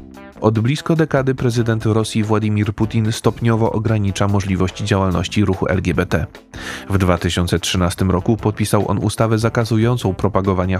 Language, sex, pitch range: Polish, male, 95-110 Hz